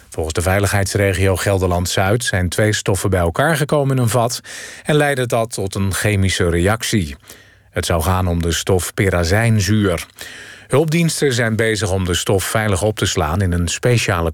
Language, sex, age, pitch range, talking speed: Dutch, male, 40-59, 90-120 Hz, 165 wpm